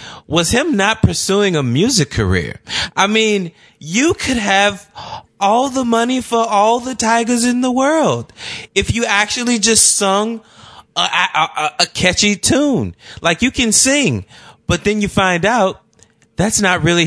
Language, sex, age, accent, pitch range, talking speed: English, male, 20-39, American, 130-195 Hz, 160 wpm